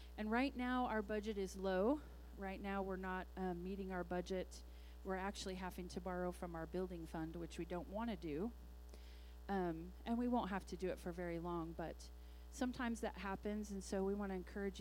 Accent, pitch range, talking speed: American, 170-200 Hz, 200 wpm